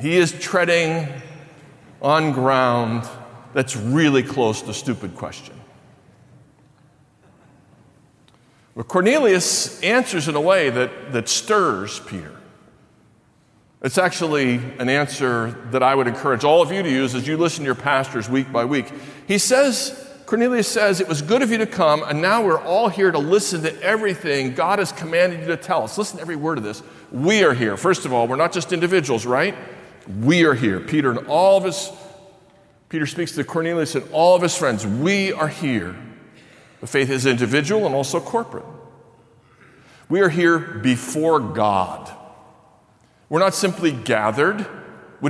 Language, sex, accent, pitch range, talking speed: English, male, American, 130-170 Hz, 165 wpm